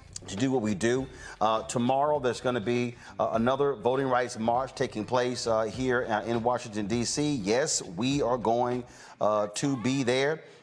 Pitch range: 105-125 Hz